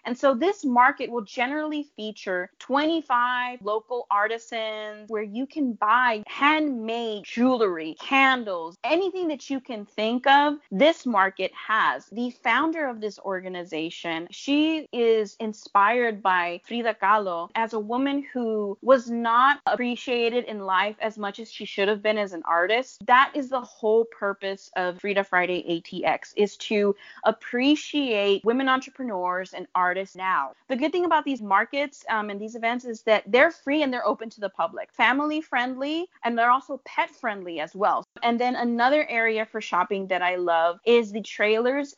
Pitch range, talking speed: 200-260 Hz, 165 wpm